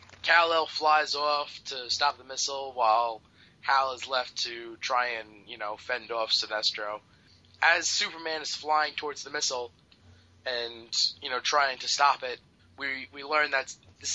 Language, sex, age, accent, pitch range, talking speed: English, male, 20-39, American, 105-145 Hz, 160 wpm